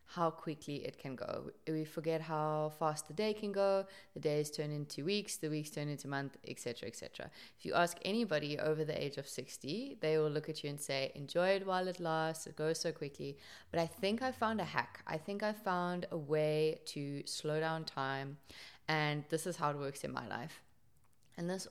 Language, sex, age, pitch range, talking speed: English, female, 20-39, 150-175 Hz, 215 wpm